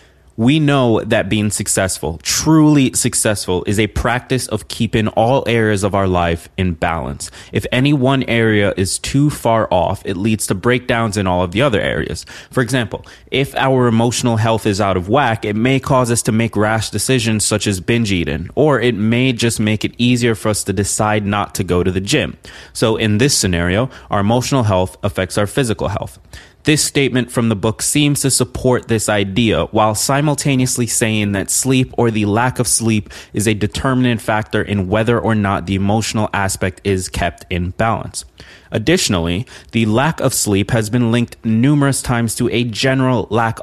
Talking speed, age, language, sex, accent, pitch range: 185 wpm, 20-39, English, male, American, 100-125 Hz